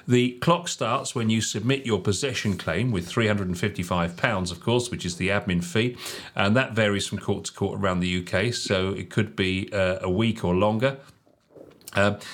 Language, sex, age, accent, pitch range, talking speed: English, male, 40-59, British, 105-130 Hz, 185 wpm